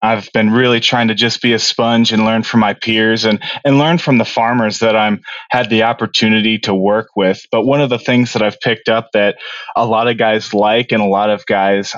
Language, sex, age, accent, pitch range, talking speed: English, male, 20-39, American, 105-120 Hz, 245 wpm